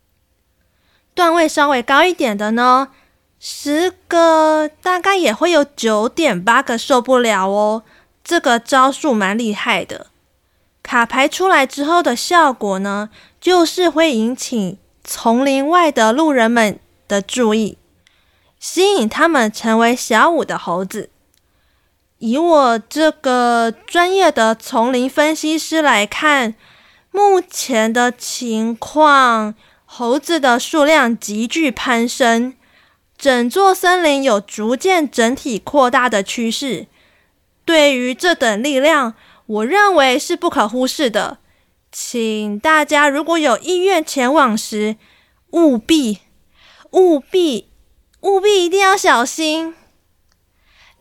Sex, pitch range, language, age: female, 225-315 Hz, Chinese, 20-39